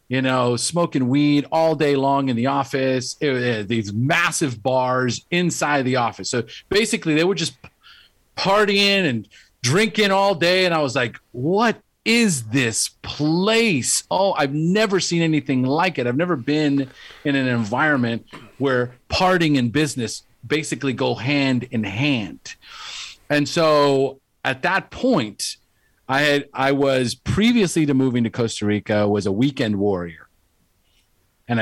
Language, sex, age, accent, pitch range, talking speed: English, male, 40-59, American, 105-150 Hz, 145 wpm